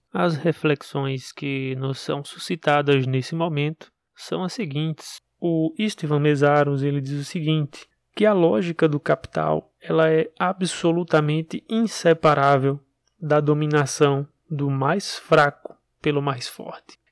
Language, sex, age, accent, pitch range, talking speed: Portuguese, male, 20-39, Brazilian, 140-160 Hz, 120 wpm